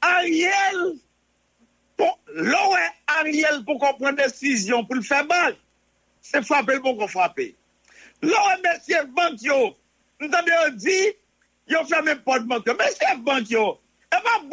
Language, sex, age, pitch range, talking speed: English, male, 50-69, 280-380 Hz, 120 wpm